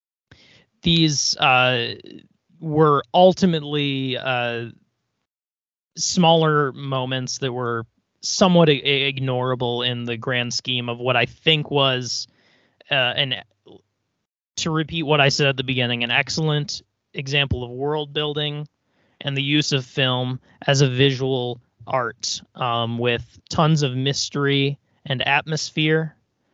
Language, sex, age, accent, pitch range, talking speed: English, male, 30-49, American, 120-150 Hz, 115 wpm